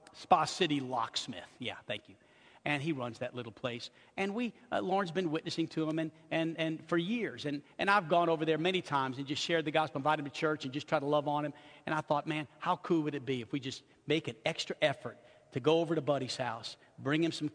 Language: English